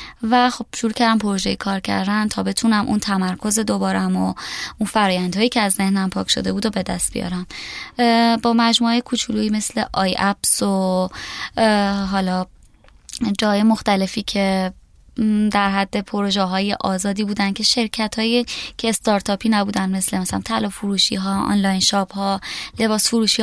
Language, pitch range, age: Persian, 195-230 Hz, 20-39